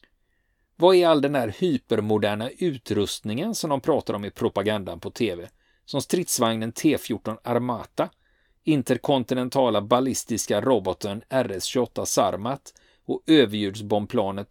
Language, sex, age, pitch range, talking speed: Swedish, male, 40-59, 100-125 Hz, 110 wpm